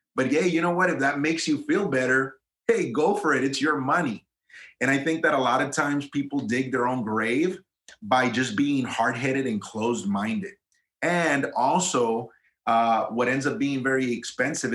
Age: 30-49